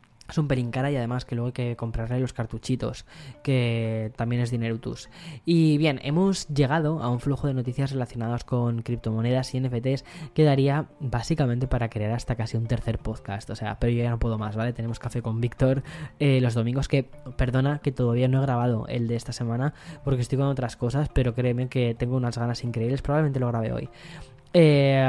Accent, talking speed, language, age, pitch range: Spanish, 205 wpm, Spanish, 10-29, 115-135 Hz